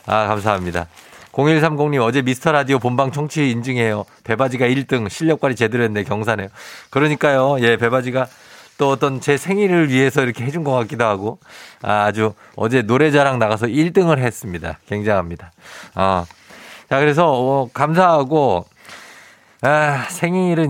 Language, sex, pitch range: Korean, male, 100-145 Hz